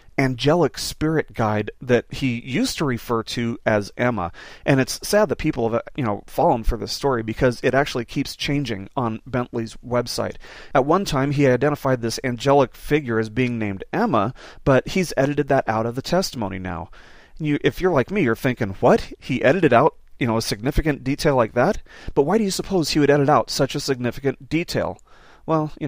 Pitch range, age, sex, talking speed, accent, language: 115-145 Hz, 30-49, male, 195 wpm, American, English